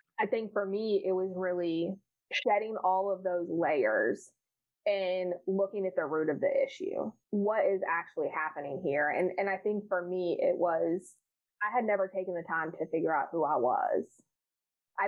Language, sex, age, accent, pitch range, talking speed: English, female, 20-39, American, 175-195 Hz, 185 wpm